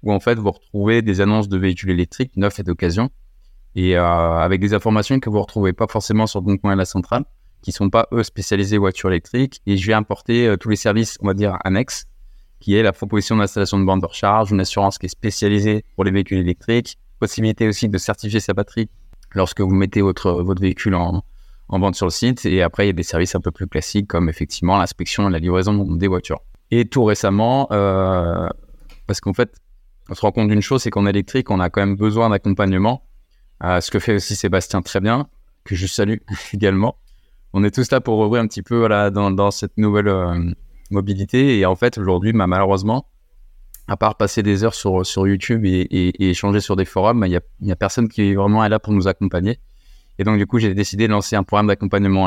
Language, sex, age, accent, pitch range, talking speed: French, male, 20-39, French, 95-110 Hz, 230 wpm